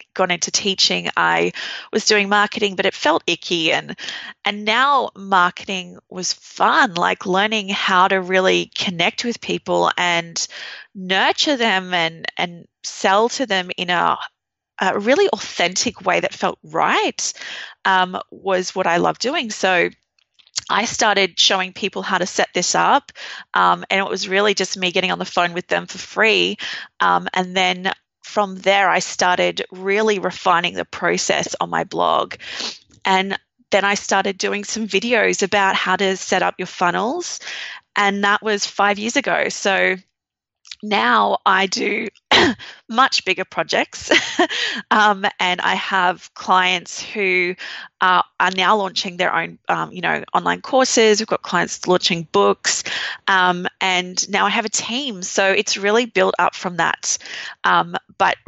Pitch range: 180-215 Hz